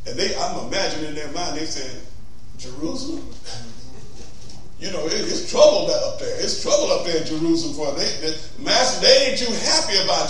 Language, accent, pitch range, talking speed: English, American, 160-220 Hz, 185 wpm